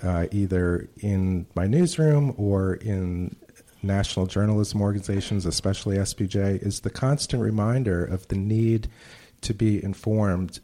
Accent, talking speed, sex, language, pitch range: American, 125 wpm, male, English, 90-110 Hz